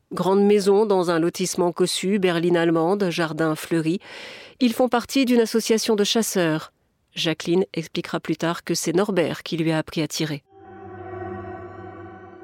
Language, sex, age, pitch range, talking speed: French, female, 40-59, 170-225 Hz, 145 wpm